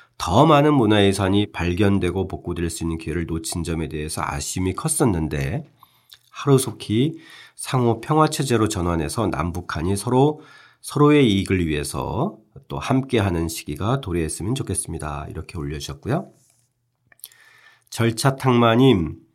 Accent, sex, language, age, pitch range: native, male, Korean, 40-59, 85-130 Hz